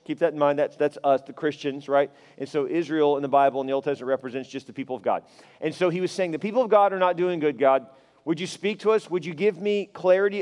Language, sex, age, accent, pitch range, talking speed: English, male, 40-59, American, 145-185 Hz, 290 wpm